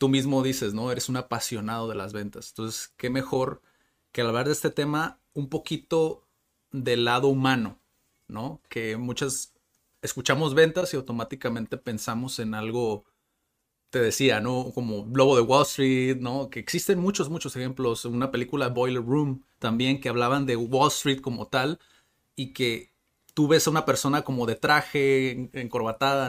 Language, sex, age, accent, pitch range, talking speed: Spanish, male, 30-49, Mexican, 120-140 Hz, 160 wpm